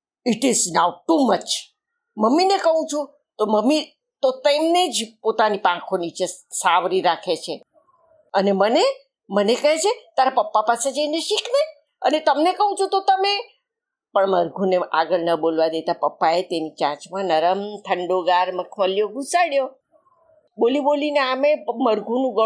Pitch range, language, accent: 190-300 Hz, Gujarati, native